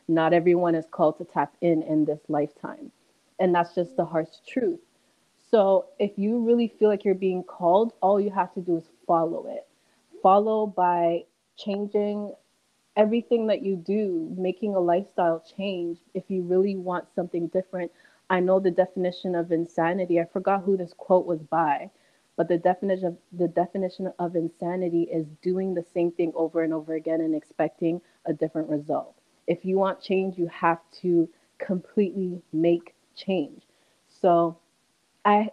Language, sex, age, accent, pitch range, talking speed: English, female, 20-39, American, 170-195 Hz, 160 wpm